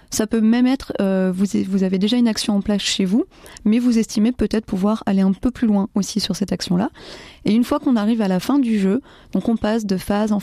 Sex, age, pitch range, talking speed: female, 20-39, 200-235 Hz, 255 wpm